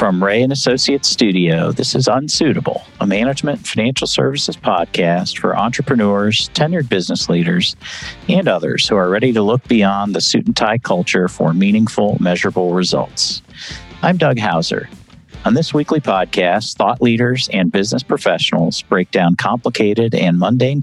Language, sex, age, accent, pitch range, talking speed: English, male, 50-69, American, 95-140 Hz, 155 wpm